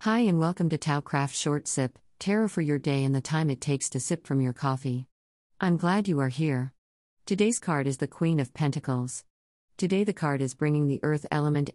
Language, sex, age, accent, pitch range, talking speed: English, female, 50-69, American, 130-165 Hz, 215 wpm